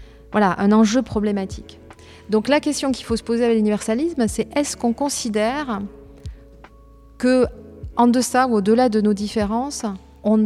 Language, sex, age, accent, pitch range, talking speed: French, female, 30-49, French, 195-240 Hz, 145 wpm